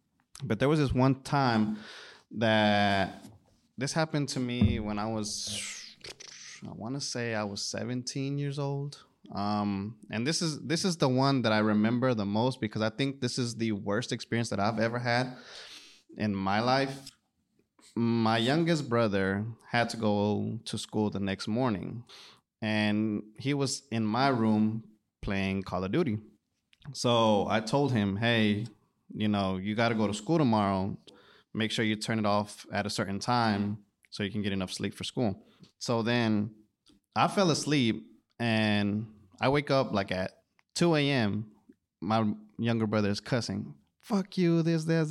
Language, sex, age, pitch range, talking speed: English, male, 20-39, 105-130 Hz, 165 wpm